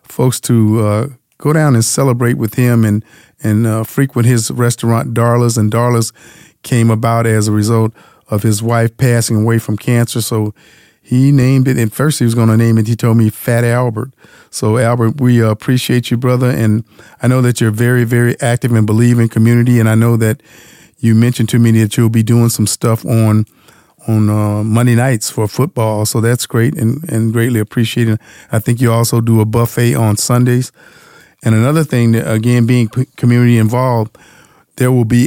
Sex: male